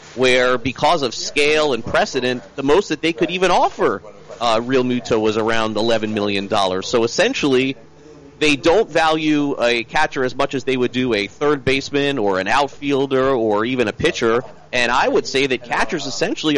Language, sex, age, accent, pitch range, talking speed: English, male, 30-49, American, 115-150 Hz, 180 wpm